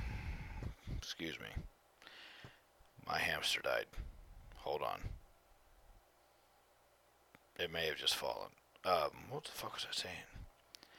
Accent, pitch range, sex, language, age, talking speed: American, 105-140 Hz, male, English, 40-59, 105 wpm